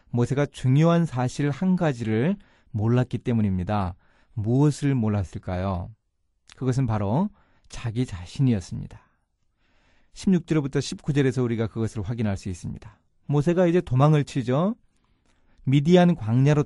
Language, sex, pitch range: Korean, male, 110-170 Hz